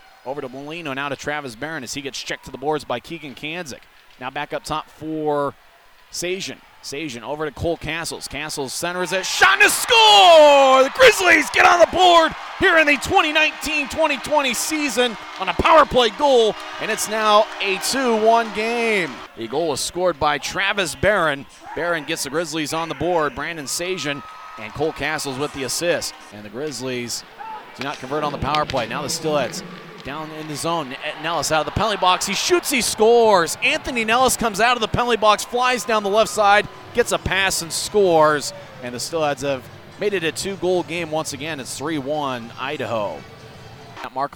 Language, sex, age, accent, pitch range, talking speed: English, male, 30-49, American, 145-235 Hz, 190 wpm